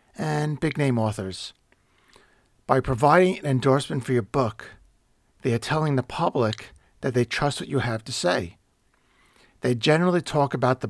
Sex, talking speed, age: male, 160 wpm, 50-69